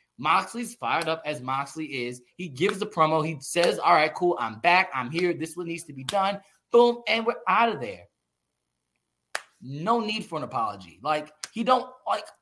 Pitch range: 140-205 Hz